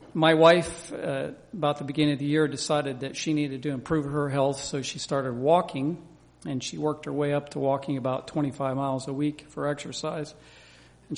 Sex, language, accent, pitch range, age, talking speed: male, English, American, 135-165 Hz, 50-69, 200 wpm